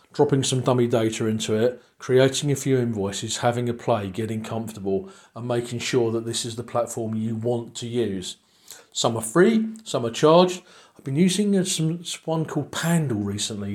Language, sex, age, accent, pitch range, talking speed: English, male, 40-59, British, 115-140 Hz, 180 wpm